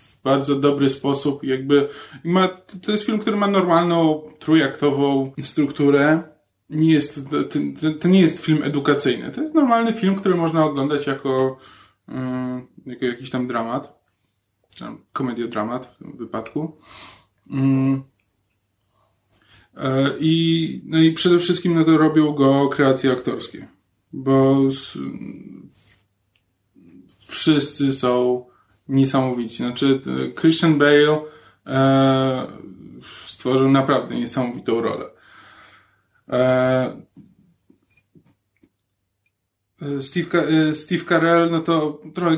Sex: male